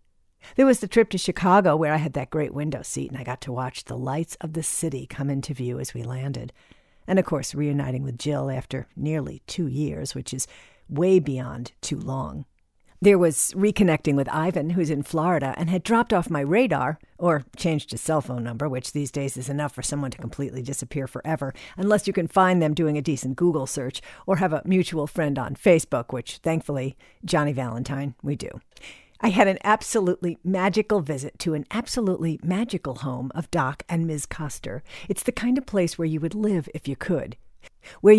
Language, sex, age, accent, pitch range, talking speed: English, female, 50-69, American, 135-180 Hz, 200 wpm